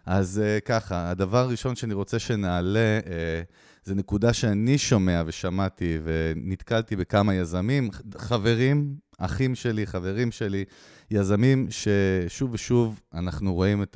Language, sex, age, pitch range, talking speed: Hebrew, male, 30-49, 95-120 Hz, 120 wpm